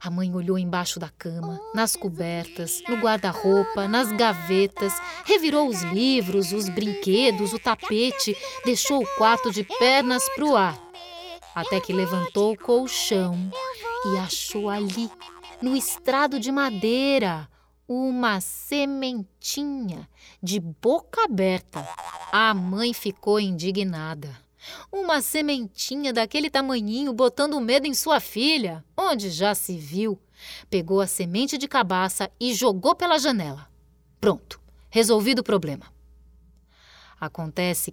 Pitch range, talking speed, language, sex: 185-260 Hz, 120 wpm, Portuguese, female